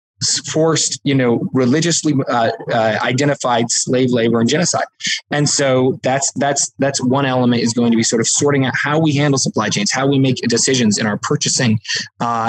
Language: English